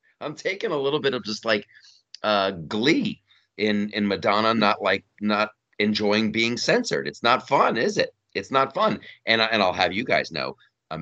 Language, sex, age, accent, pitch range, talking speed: English, male, 40-59, American, 95-120 Hz, 195 wpm